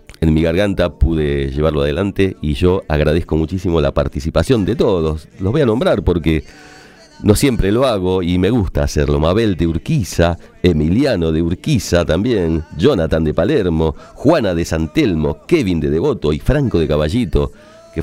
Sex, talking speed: male, 160 wpm